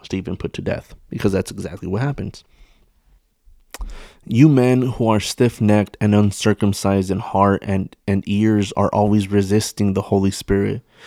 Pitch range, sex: 100-125 Hz, male